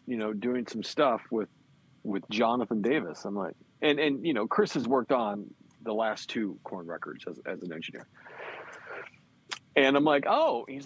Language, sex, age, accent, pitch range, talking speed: English, male, 40-59, American, 105-140 Hz, 180 wpm